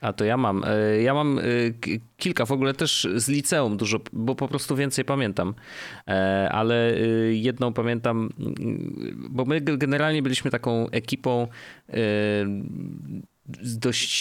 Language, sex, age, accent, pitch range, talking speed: Polish, male, 30-49, native, 105-125 Hz, 120 wpm